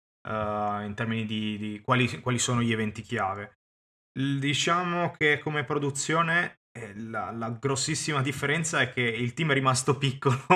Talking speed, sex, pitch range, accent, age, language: 150 wpm, male, 115-135 Hz, native, 20-39, Italian